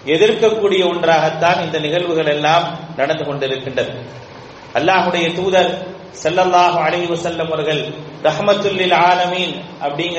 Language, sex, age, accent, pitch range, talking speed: English, male, 40-59, Indian, 165-195 Hz, 120 wpm